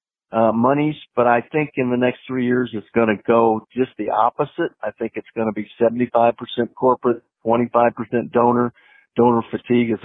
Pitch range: 110-130 Hz